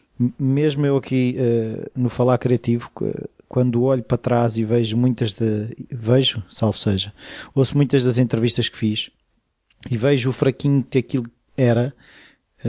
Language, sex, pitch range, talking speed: Portuguese, male, 115-130 Hz, 150 wpm